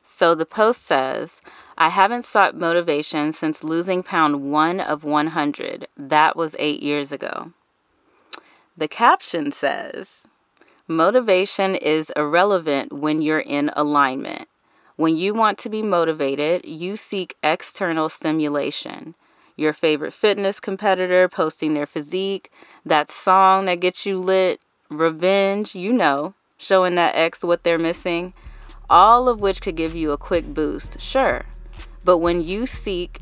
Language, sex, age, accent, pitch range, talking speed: English, female, 30-49, American, 155-190 Hz, 135 wpm